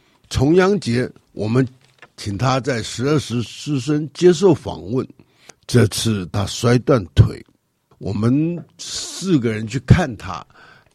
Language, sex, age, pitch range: Chinese, male, 60-79, 105-180 Hz